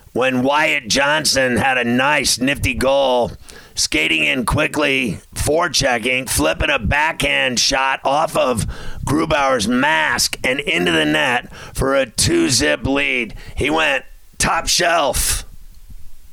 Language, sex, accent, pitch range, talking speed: English, male, American, 120-140 Hz, 120 wpm